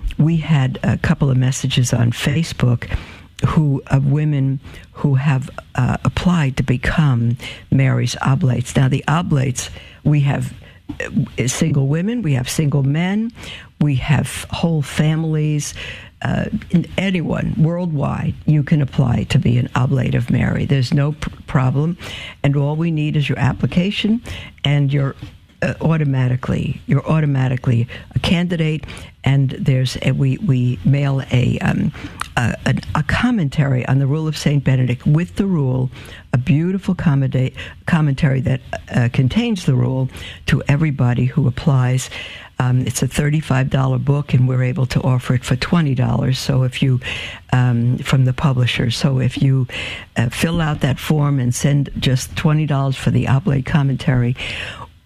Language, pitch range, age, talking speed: English, 125-150 Hz, 60-79, 150 wpm